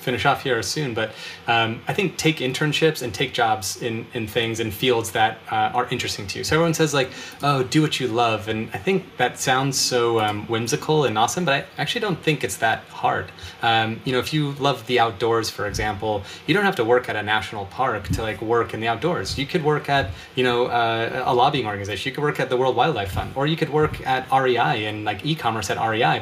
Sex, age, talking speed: male, 30-49, 240 wpm